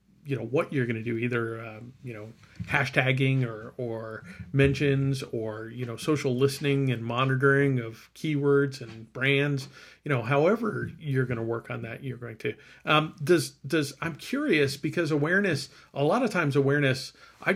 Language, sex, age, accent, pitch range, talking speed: English, male, 40-59, American, 120-140 Hz, 175 wpm